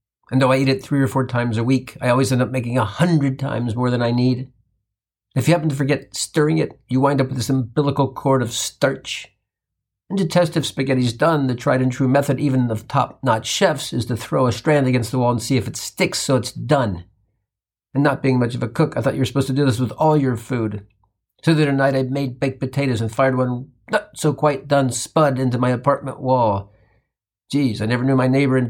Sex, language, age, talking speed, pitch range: male, English, 50-69, 245 wpm, 120-140 Hz